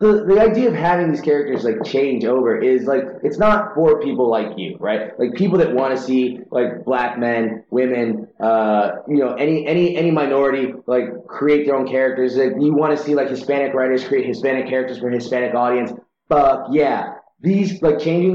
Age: 30-49